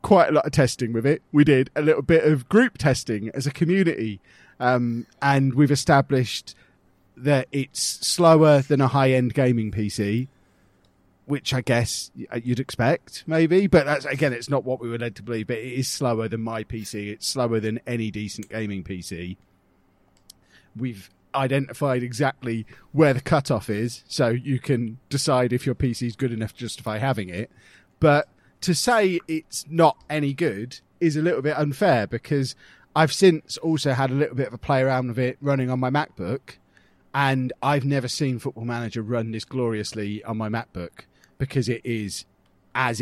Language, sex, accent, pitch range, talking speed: English, male, British, 110-140 Hz, 180 wpm